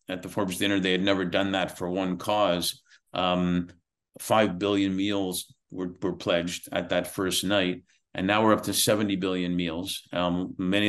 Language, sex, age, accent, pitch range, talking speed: English, male, 50-69, American, 90-105 Hz, 180 wpm